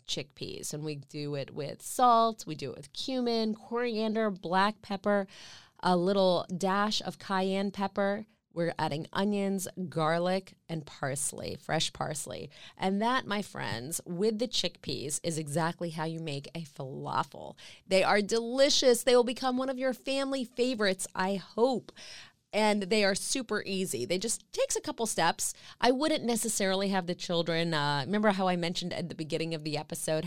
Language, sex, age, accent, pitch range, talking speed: English, female, 30-49, American, 170-220 Hz, 165 wpm